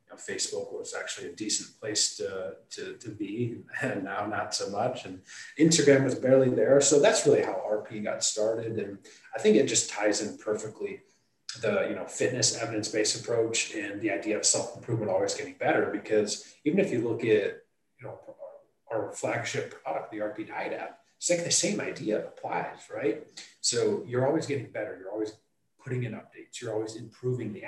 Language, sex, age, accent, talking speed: English, male, 30-49, American, 185 wpm